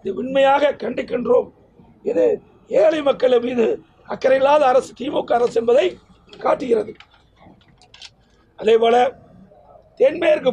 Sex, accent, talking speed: male, native, 85 wpm